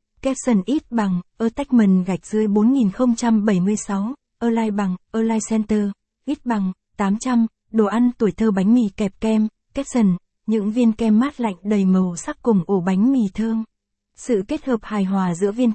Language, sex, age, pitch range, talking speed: Vietnamese, female, 20-39, 200-235 Hz, 180 wpm